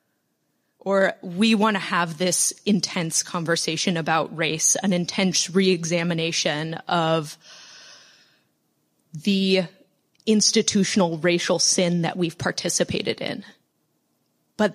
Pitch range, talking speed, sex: 170-215 Hz, 95 wpm, female